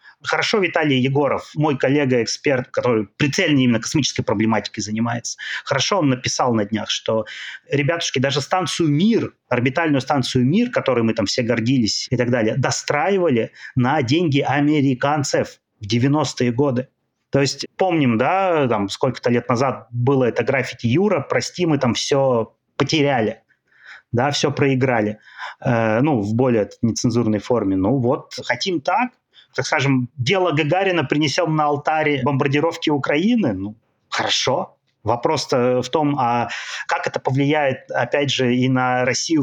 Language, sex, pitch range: Russian, male, 125-155 Hz